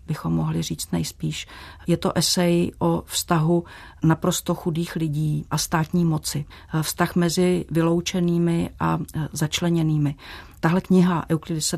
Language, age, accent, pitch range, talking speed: Czech, 40-59, native, 155-175 Hz, 115 wpm